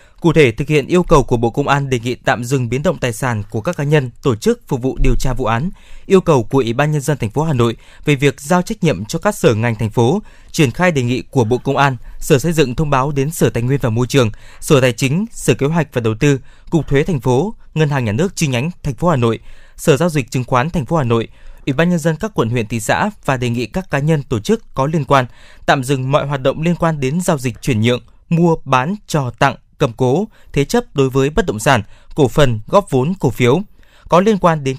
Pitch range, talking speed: 130-165 Hz, 275 wpm